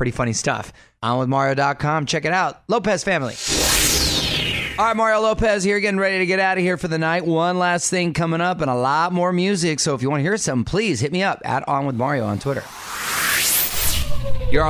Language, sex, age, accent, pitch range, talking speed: English, male, 30-49, American, 100-135 Hz, 220 wpm